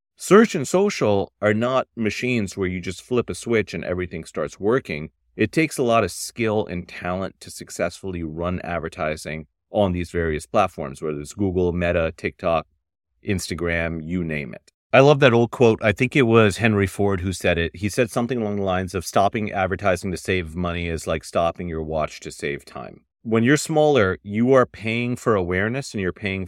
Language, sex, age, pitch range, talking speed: English, male, 30-49, 85-115 Hz, 195 wpm